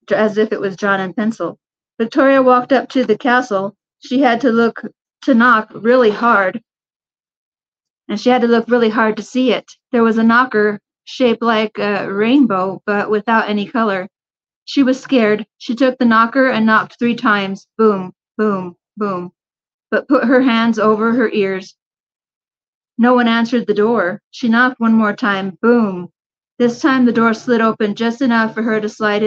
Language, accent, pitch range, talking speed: English, American, 205-250 Hz, 180 wpm